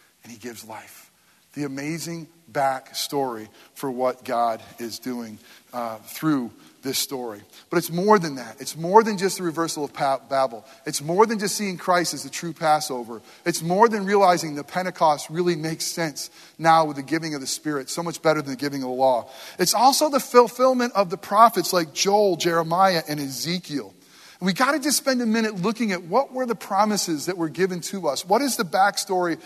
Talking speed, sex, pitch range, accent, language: 200 wpm, male, 150-215 Hz, American, English